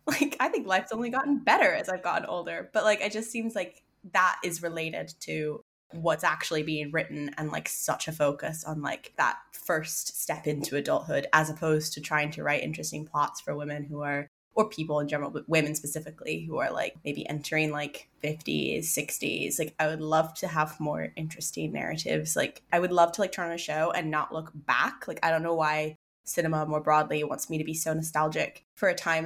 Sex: female